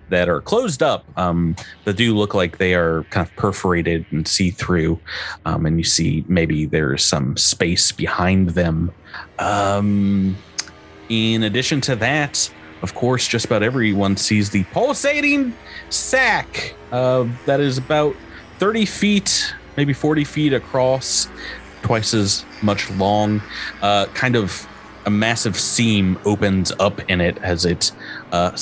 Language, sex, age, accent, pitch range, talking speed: English, male, 30-49, American, 90-130 Hz, 145 wpm